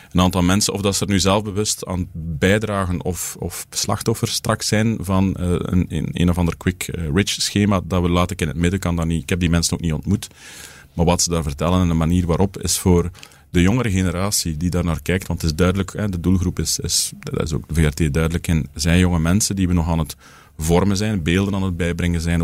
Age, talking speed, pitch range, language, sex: 30-49, 240 wpm, 85-95 Hz, Dutch, male